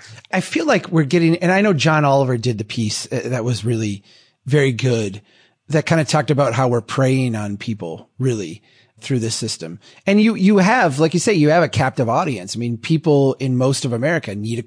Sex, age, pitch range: male, 30-49, 120-160 Hz